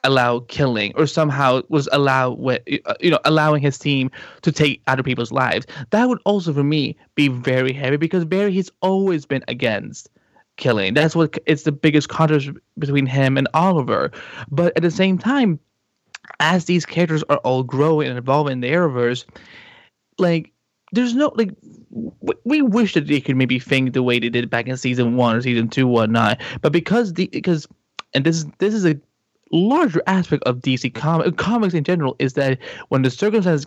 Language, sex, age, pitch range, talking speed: English, male, 20-39, 130-175 Hz, 185 wpm